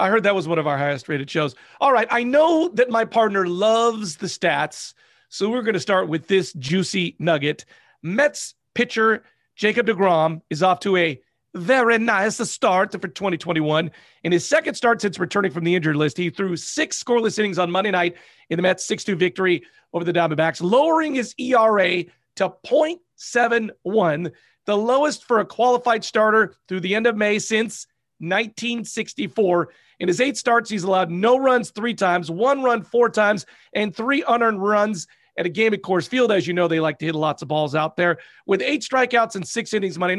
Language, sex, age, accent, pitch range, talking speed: English, male, 40-59, American, 175-235 Hz, 195 wpm